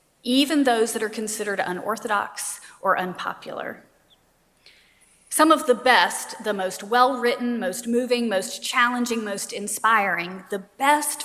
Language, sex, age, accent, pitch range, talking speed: English, female, 40-59, American, 205-260 Hz, 125 wpm